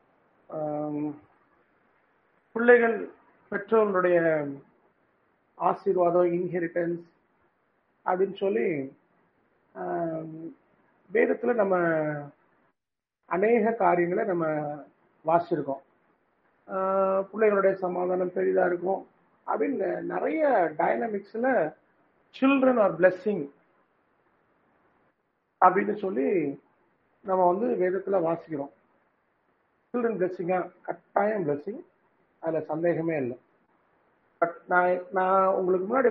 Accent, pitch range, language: Indian, 155-200 Hz, English